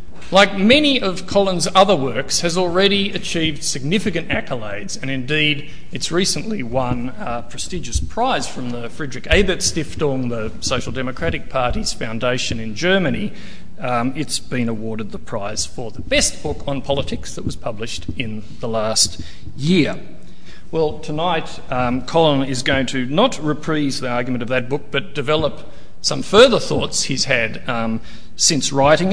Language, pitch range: English, 115-155 Hz